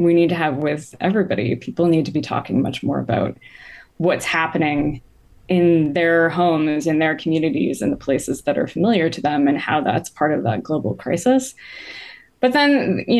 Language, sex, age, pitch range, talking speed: English, female, 20-39, 155-185 Hz, 185 wpm